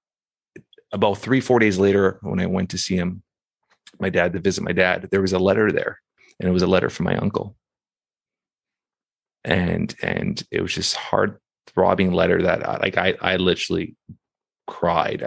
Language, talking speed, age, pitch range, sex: English, 175 wpm, 30-49, 95-120 Hz, male